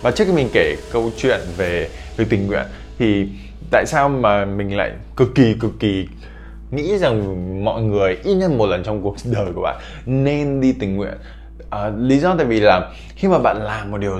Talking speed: 205 wpm